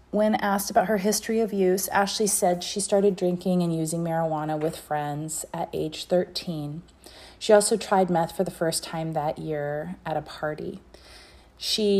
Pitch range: 155-190 Hz